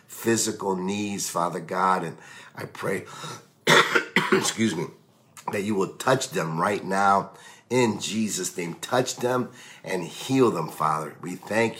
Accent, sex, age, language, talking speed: American, male, 50-69, English, 135 wpm